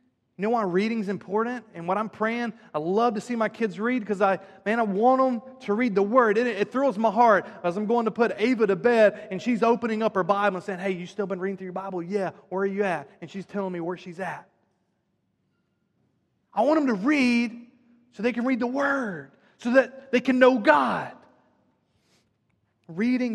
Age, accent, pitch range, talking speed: 30-49, American, 185-235 Hz, 220 wpm